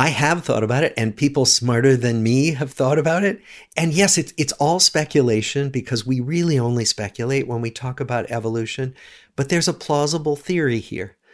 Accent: American